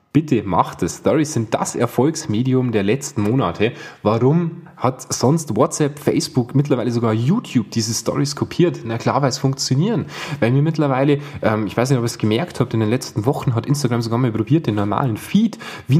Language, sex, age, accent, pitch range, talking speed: German, male, 10-29, German, 115-155 Hz, 190 wpm